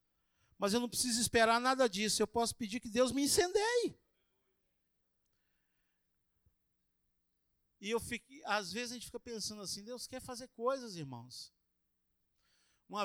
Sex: male